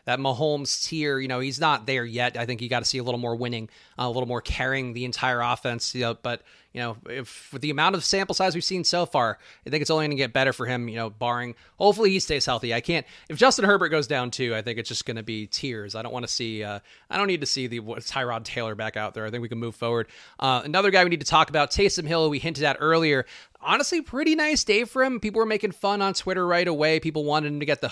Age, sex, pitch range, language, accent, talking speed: 30-49, male, 125-175 Hz, English, American, 285 wpm